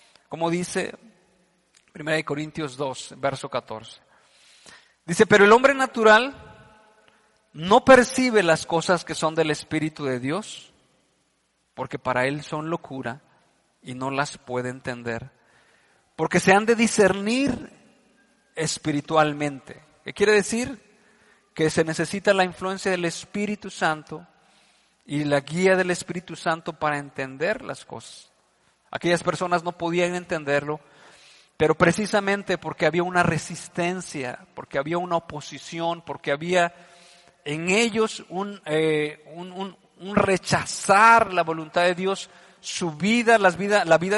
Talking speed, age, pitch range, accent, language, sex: 120 wpm, 40-59, 155-205 Hz, Mexican, Spanish, male